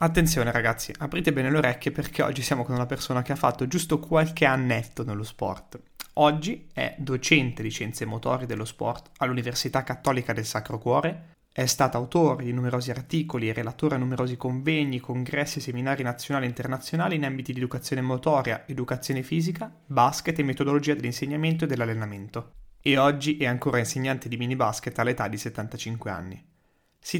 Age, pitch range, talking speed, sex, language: 20-39, 120-150 Hz, 165 wpm, male, Italian